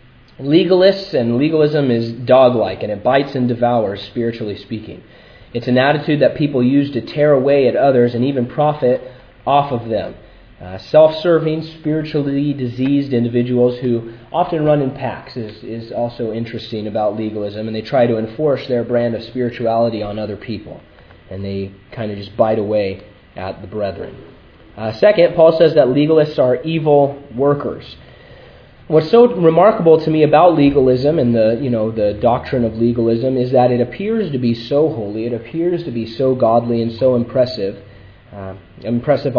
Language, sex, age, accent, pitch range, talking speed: English, male, 30-49, American, 115-145 Hz, 170 wpm